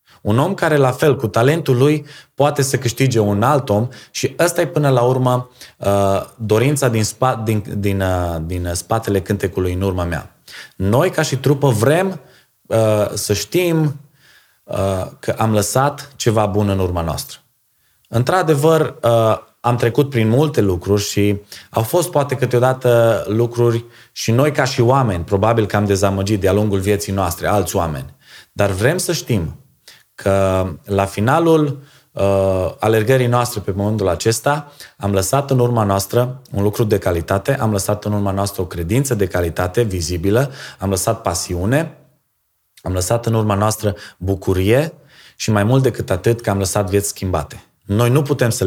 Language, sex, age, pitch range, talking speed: Romanian, male, 20-39, 95-125 Hz, 155 wpm